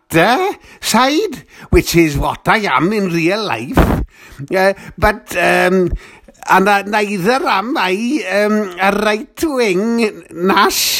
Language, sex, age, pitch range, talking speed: English, male, 60-79, 180-240 Hz, 115 wpm